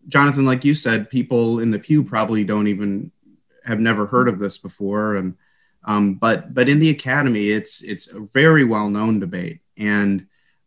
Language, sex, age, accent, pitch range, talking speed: English, male, 30-49, American, 100-125 Hz, 175 wpm